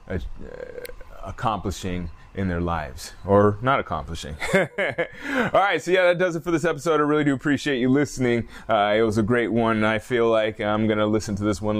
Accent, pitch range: American, 115-170 Hz